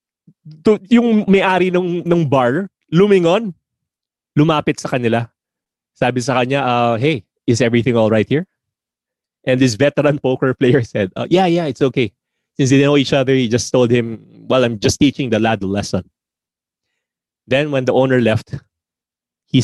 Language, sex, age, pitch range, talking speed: English, male, 30-49, 115-145 Hz, 160 wpm